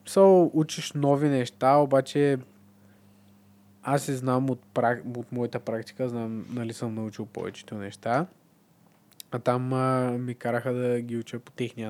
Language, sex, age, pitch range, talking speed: Bulgarian, male, 20-39, 110-140 Hz, 145 wpm